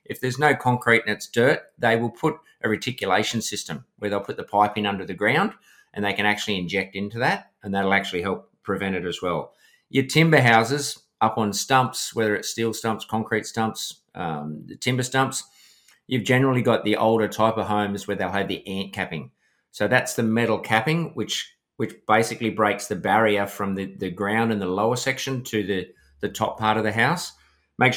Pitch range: 100-120 Hz